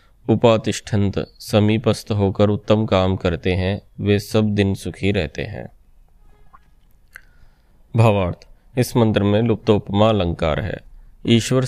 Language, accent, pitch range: Hindi, native, 100-110 Hz